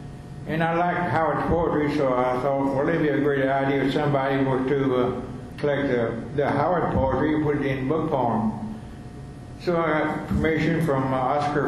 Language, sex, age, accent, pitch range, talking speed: English, male, 60-79, American, 130-150 Hz, 190 wpm